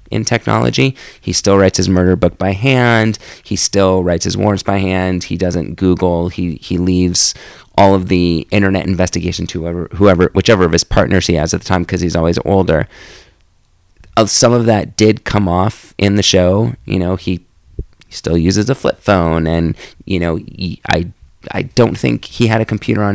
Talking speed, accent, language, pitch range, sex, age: 190 wpm, American, English, 85-105 Hz, male, 30-49